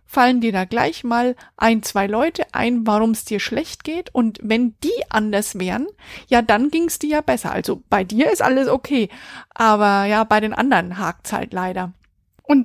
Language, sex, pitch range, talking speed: German, female, 220-275 Hz, 200 wpm